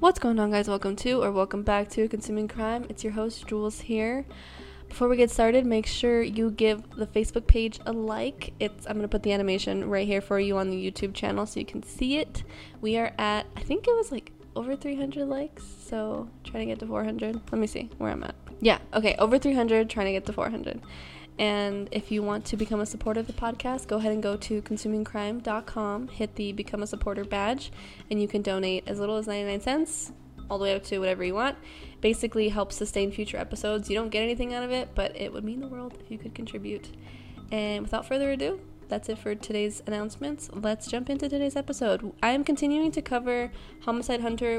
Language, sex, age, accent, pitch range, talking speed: English, female, 20-39, American, 205-245 Hz, 220 wpm